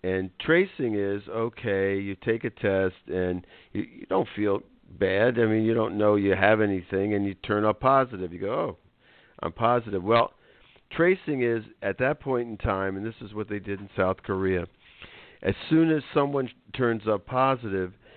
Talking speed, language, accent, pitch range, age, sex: 190 wpm, English, American, 95-115 Hz, 50-69, male